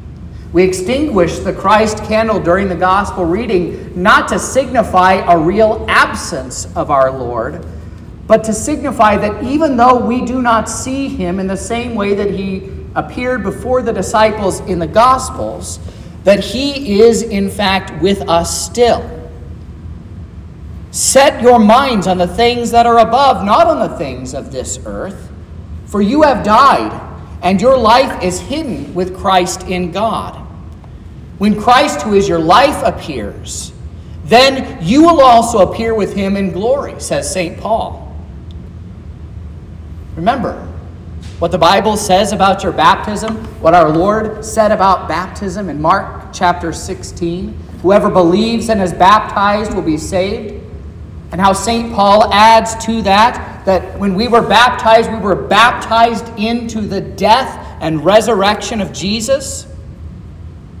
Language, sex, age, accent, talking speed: English, male, 40-59, American, 145 wpm